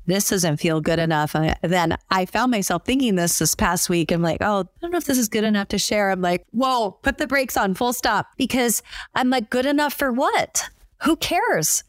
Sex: female